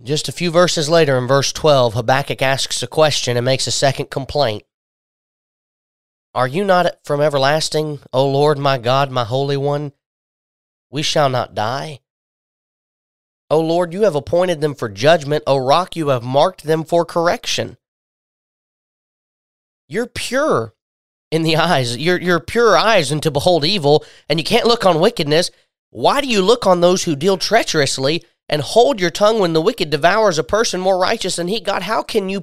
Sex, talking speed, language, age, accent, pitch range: male, 175 wpm, English, 30-49, American, 130-175 Hz